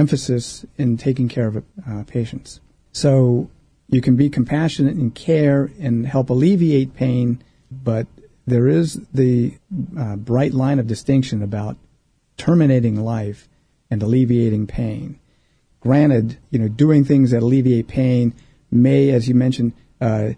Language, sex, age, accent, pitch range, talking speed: English, male, 50-69, American, 120-140 Hz, 135 wpm